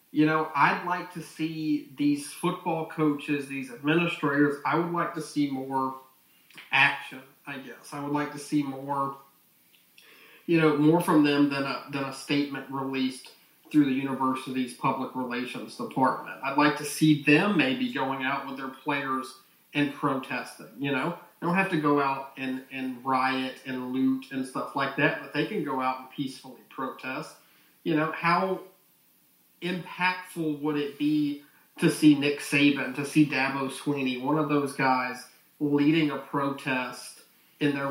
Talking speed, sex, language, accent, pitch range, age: 165 wpm, male, English, American, 135-155 Hz, 30-49